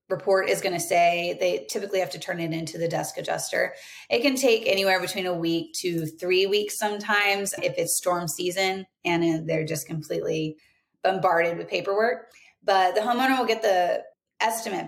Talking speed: 180 wpm